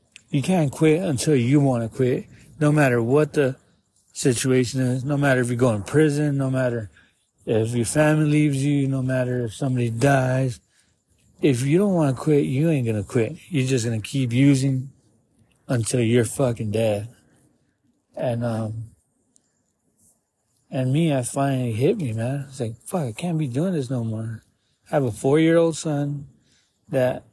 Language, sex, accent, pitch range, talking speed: English, male, American, 120-145 Hz, 180 wpm